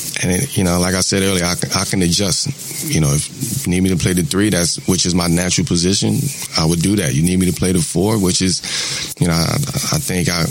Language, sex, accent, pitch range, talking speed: English, male, American, 95-140 Hz, 265 wpm